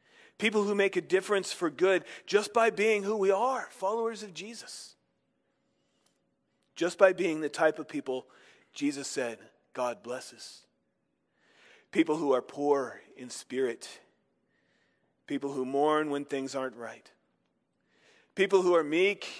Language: English